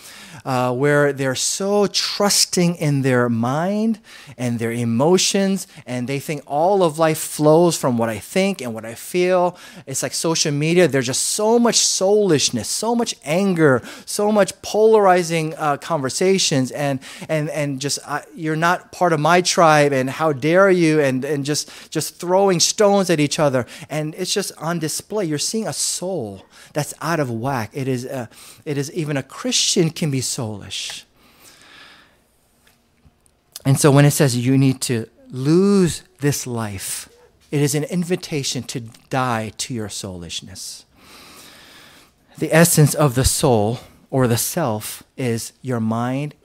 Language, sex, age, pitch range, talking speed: English, male, 30-49, 120-170 Hz, 160 wpm